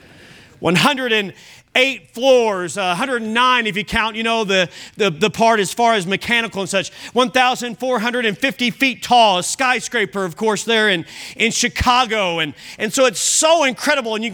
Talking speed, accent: 160 wpm, American